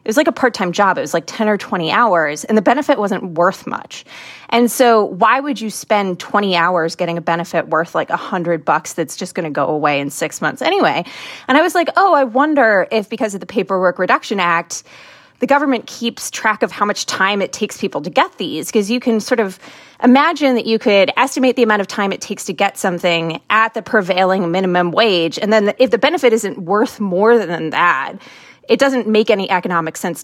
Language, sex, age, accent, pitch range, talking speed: English, female, 20-39, American, 185-240 Hz, 220 wpm